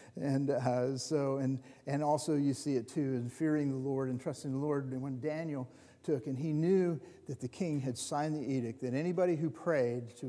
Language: English